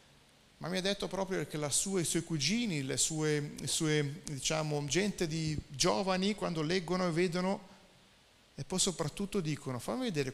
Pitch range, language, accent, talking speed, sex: 145-185 Hz, Italian, native, 170 wpm, male